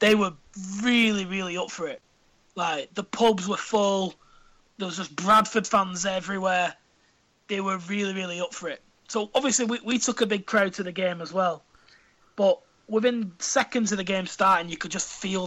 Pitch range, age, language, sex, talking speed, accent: 185-220 Hz, 20-39, English, male, 190 wpm, British